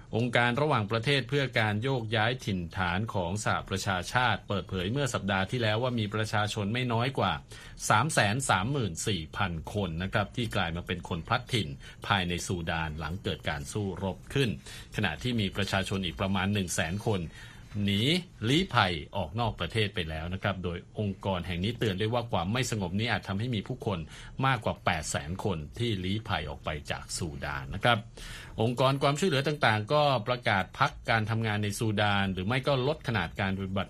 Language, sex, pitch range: Thai, male, 95-120 Hz